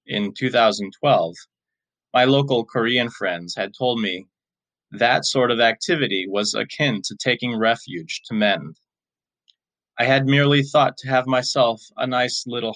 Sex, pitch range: male, 80-125 Hz